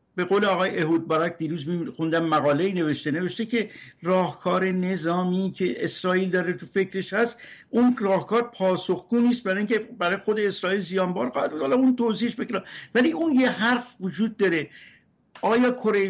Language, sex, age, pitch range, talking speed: Persian, male, 60-79, 175-215 Hz, 155 wpm